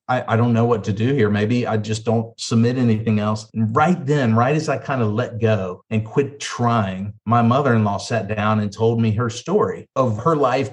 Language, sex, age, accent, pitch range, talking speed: English, male, 40-59, American, 110-130 Hz, 220 wpm